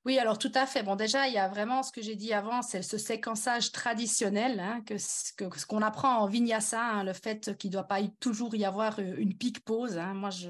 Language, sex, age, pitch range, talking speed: French, female, 30-49, 210-260 Hz, 240 wpm